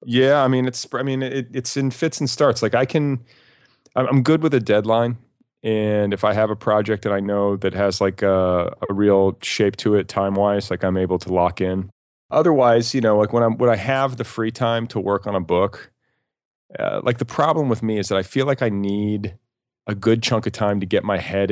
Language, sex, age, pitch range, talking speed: English, male, 30-49, 95-115 Hz, 235 wpm